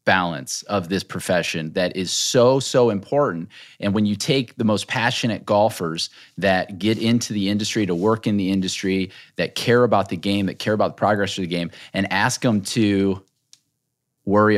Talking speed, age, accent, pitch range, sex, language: 185 wpm, 30-49, American, 100-125 Hz, male, English